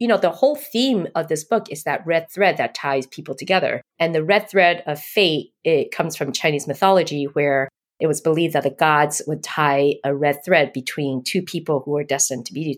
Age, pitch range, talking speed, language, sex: 30-49, 140-180 Hz, 220 wpm, English, female